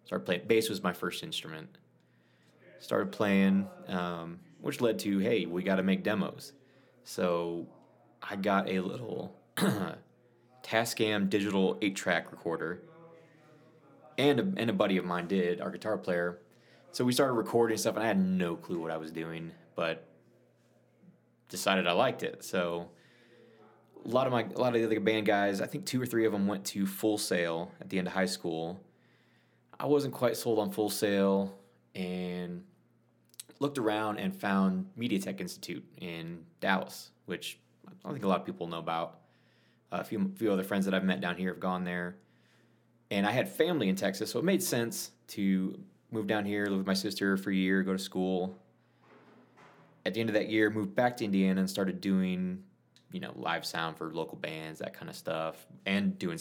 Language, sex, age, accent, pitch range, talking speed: English, male, 20-39, American, 90-110 Hz, 190 wpm